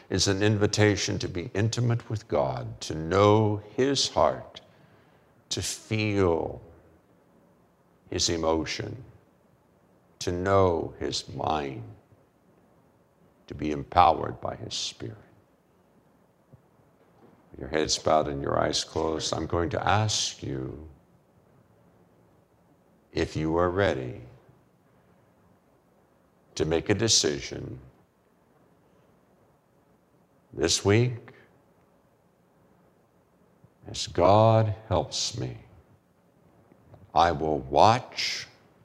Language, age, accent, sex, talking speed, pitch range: English, 60-79, American, male, 85 wpm, 85-110 Hz